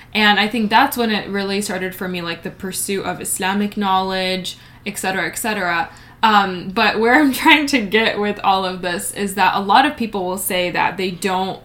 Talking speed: 215 wpm